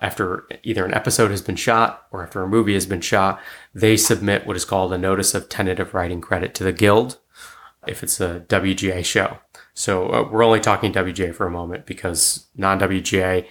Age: 20-39